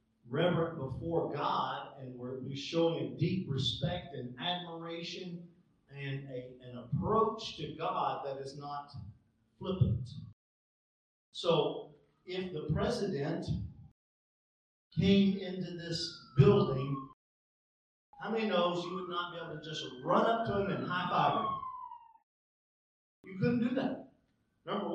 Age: 50-69